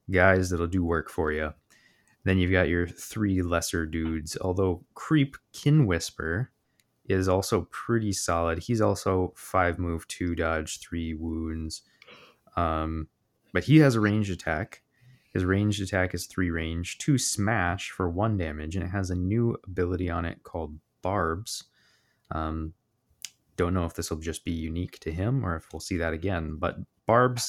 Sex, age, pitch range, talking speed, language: male, 20-39, 85-105 Hz, 165 wpm, English